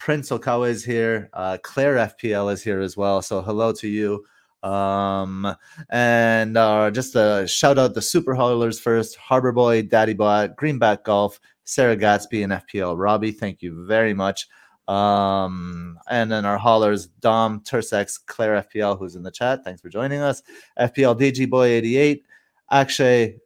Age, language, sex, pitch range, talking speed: 30-49, English, male, 105-125 Hz, 165 wpm